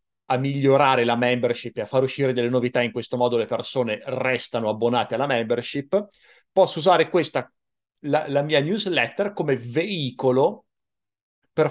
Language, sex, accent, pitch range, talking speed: Italian, male, native, 120-150 Hz, 150 wpm